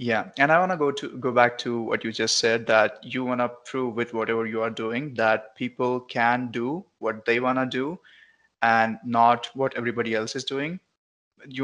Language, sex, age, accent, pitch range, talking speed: English, male, 20-39, Indian, 115-135 Hz, 210 wpm